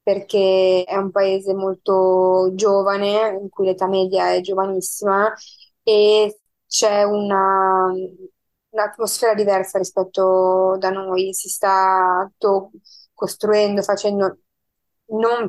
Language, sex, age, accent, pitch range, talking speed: Italian, female, 20-39, native, 190-205 Hz, 95 wpm